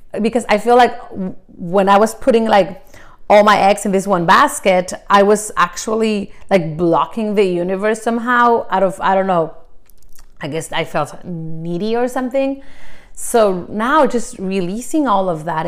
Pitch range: 180-225 Hz